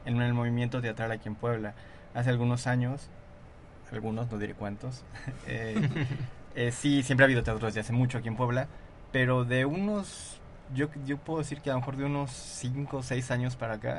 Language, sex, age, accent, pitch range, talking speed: Spanish, male, 20-39, Mexican, 110-125 Hz, 195 wpm